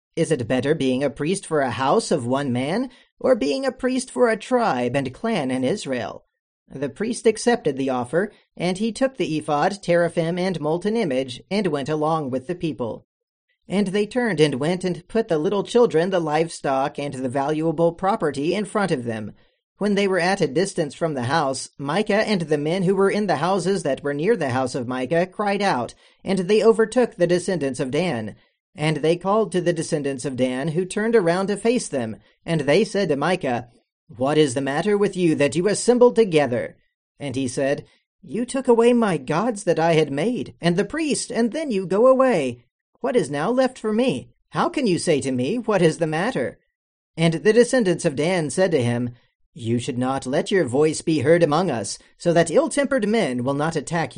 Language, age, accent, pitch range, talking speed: English, 40-59, American, 145-210 Hz, 205 wpm